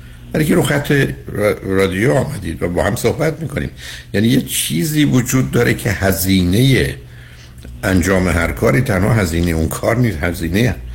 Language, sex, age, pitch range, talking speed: Persian, male, 60-79, 80-110 Hz, 150 wpm